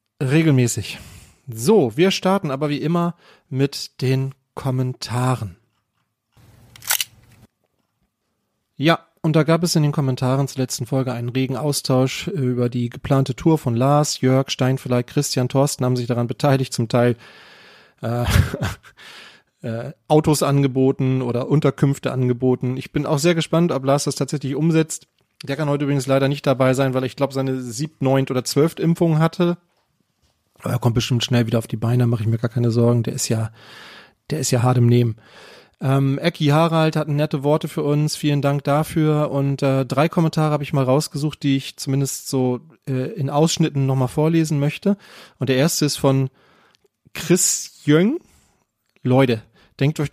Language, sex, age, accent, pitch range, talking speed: German, male, 30-49, German, 125-150 Hz, 165 wpm